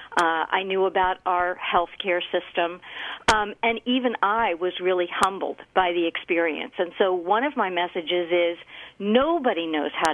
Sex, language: female, English